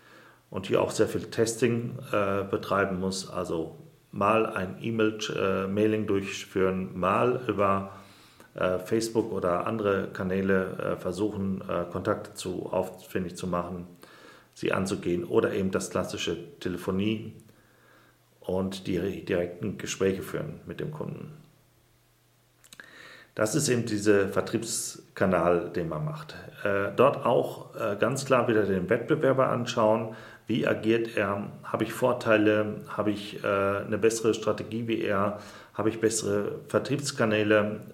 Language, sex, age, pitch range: German, male, 40-59, 100-120 Hz